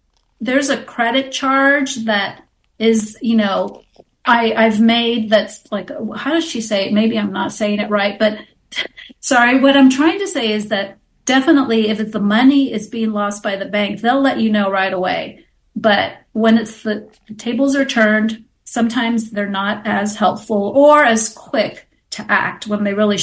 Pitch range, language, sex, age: 215-260 Hz, English, female, 40-59